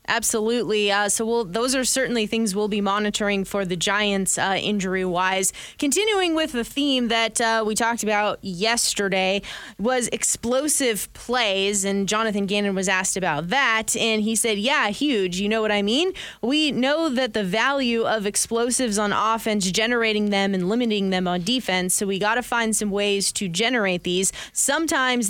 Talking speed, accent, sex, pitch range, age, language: 175 wpm, American, female, 195-235 Hz, 20-39, English